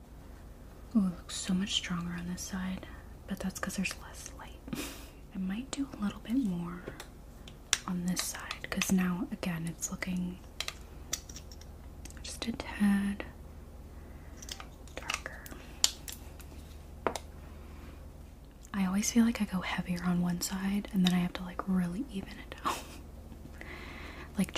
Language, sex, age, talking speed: English, female, 30-49, 135 wpm